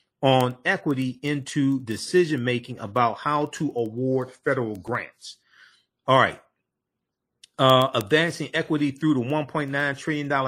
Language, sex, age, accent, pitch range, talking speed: English, male, 40-59, American, 130-175 Hz, 110 wpm